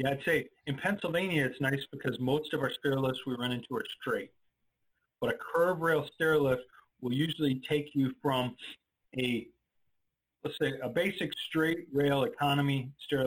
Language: English